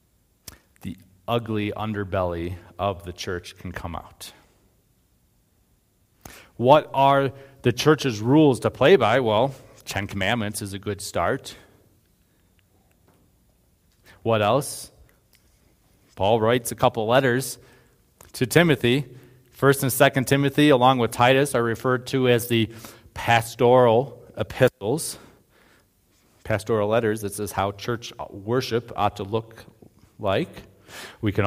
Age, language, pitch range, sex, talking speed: 40-59, English, 100-125 Hz, male, 115 wpm